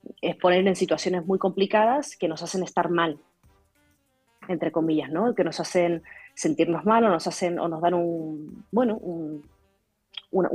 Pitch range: 170-200 Hz